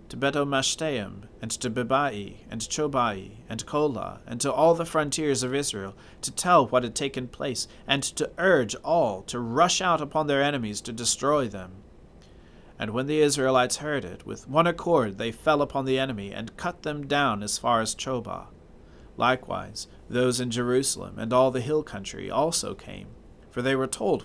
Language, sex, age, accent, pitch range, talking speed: English, male, 40-59, American, 105-140 Hz, 180 wpm